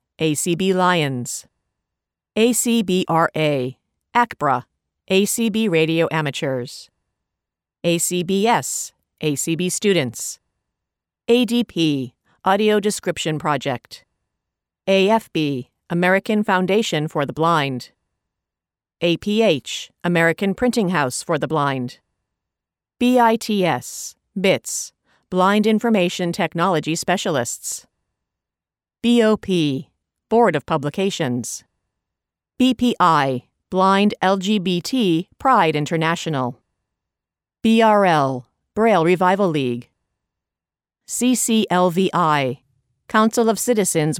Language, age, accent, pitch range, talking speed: English, 50-69, American, 145-210 Hz, 70 wpm